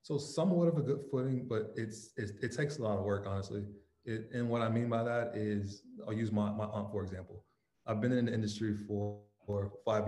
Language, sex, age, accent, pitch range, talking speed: English, male, 20-39, American, 100-115 Hz, 230 wpm